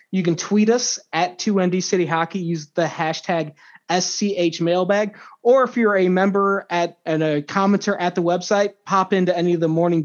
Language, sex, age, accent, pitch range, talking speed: English, male, 20-39, American, 160-195 Hz, 165 wpm